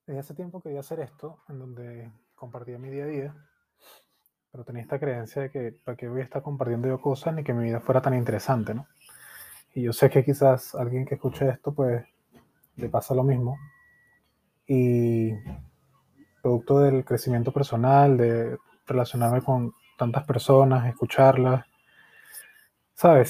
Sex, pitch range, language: male, 125-140 Hz, Spanish